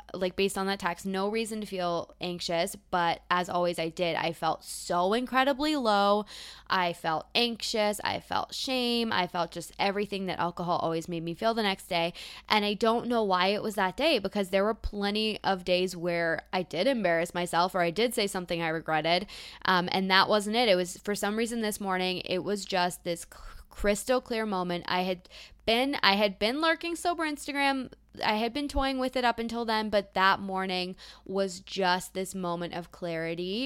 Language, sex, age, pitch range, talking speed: English, female, 20-39, 175-205 Hz, 200 wpm